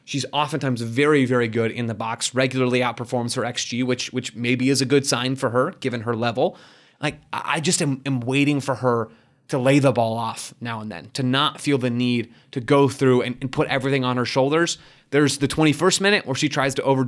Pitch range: 120-145 Hz